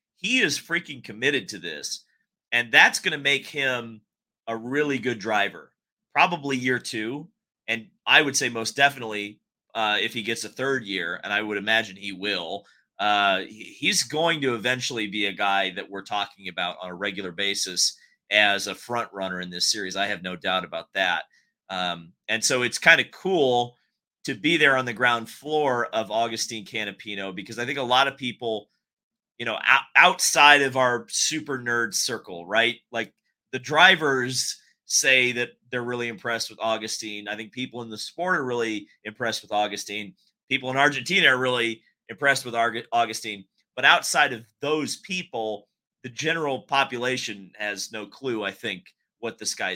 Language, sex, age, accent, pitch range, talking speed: English, male, 30-49, American, 105-135 Hz, 175 wpm